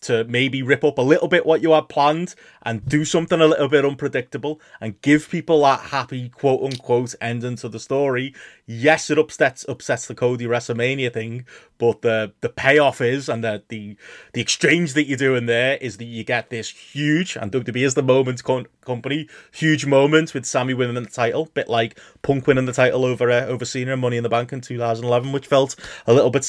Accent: British